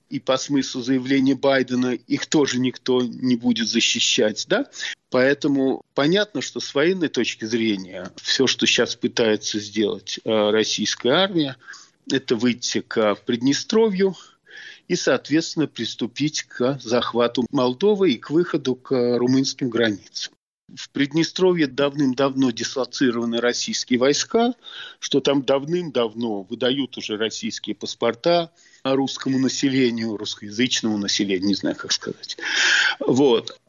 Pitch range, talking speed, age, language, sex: 120-170 Hz, 110 wpm, 50-69, Russian, male